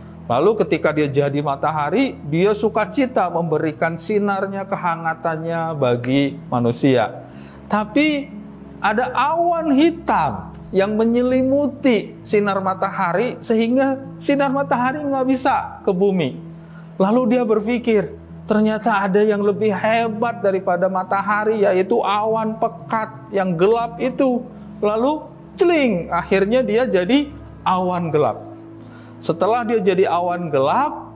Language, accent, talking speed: Indonesian, native, 105 wpm